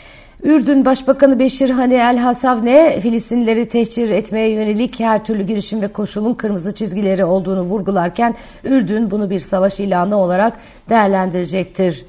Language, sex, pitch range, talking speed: Turkish, female, 195-235 Hz, 125 wpm